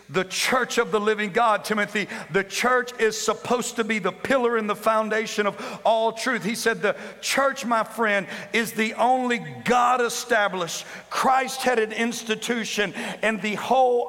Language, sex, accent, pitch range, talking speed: English, male, American, 205-235 Hz, 160 wpm